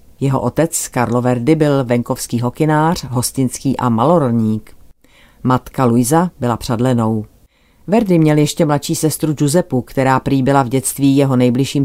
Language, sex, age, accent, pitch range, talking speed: Czech, female, 40-59, native, 125-150 Hz, 135 wpm